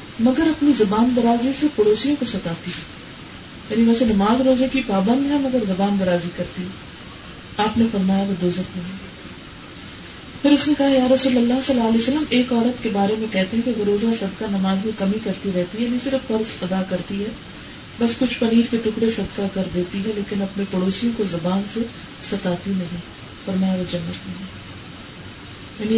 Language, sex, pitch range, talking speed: Urdu, female, 185-230 Hz, 190 wpm